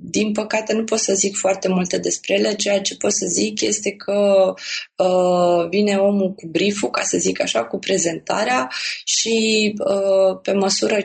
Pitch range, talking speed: 170-215 Hz, 165 wpm